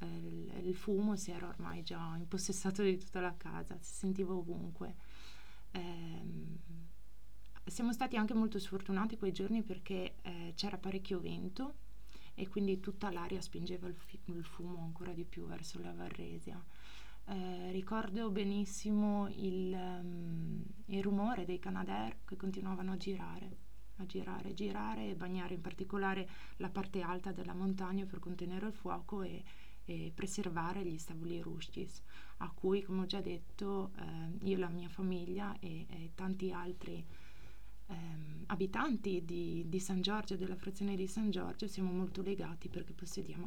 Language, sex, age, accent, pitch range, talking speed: Italian, female, 20-39, native, 175-195 Hz, 150 wpm